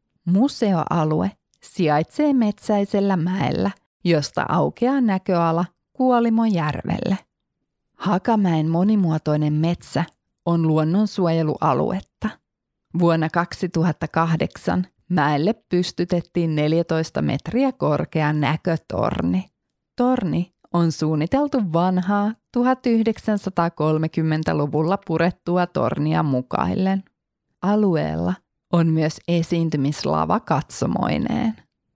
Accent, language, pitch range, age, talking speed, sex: native, Finnish, 160-205 Hz, 30-49, 65 wpm, female